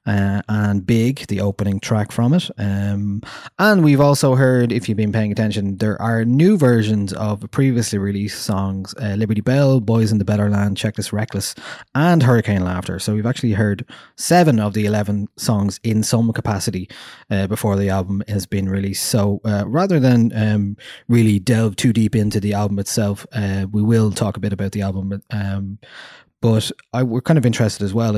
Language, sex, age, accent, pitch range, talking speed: English, male, 20-39, Irish, 100-115 Hz, 190 wpm